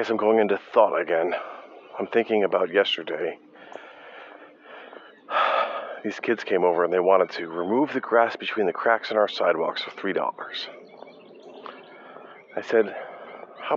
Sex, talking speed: male, 135 wpm